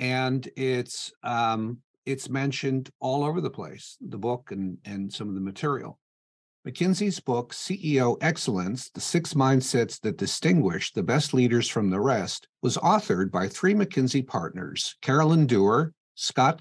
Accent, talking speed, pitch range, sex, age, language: American, 150 wpm, 115-150 Hz, male, 50-69, English